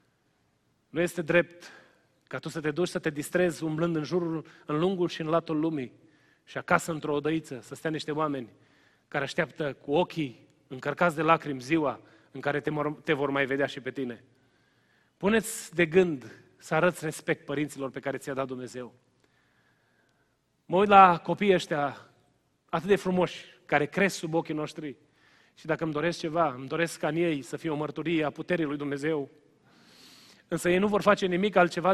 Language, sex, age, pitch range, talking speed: Romanian, male, 30-49, 150-180 Hz, 180 wpm